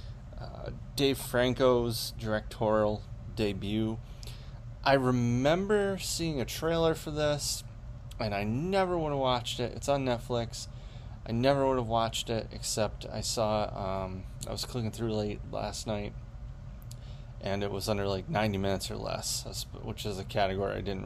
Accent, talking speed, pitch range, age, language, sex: American, 155 wpm, 105-120 Hz, 30-49, English, male